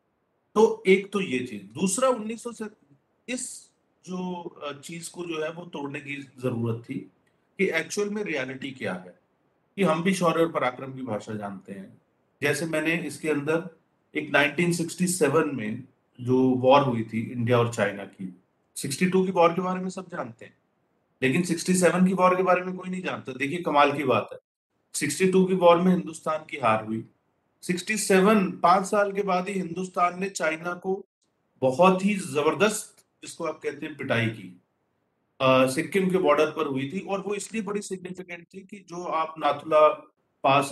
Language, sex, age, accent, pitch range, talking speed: English, male, 40-59, Indian, 130-185 Hz, 145 wpm